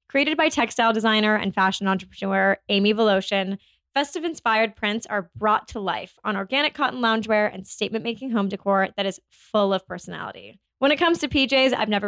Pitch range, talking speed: 205-265 Hz, 180 wpm